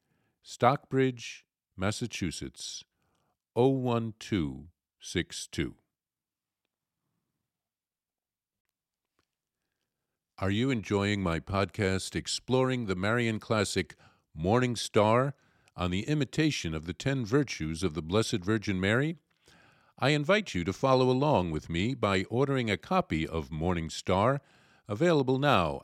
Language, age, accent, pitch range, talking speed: English, 50-69, American, 90-130 Hz, 100 wpm